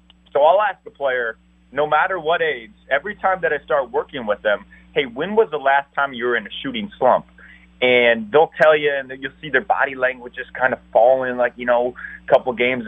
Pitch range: 110-140 Hz